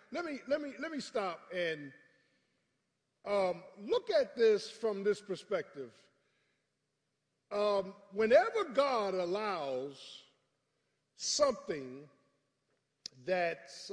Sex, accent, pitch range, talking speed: male, American, 145-210 Hz, 90 wpm